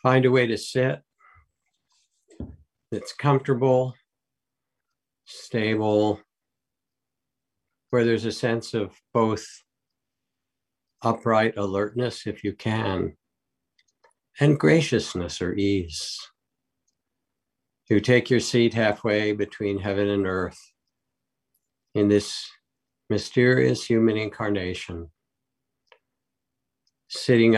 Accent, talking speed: American, 85 wpm